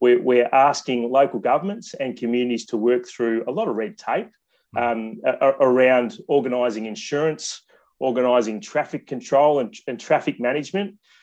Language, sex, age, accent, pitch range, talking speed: English, male, 30-49, Australian, 120-150 Hz, 130 wpm